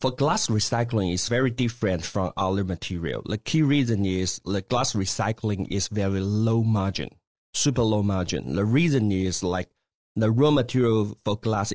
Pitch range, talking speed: 95-120 Hz, 165 wpm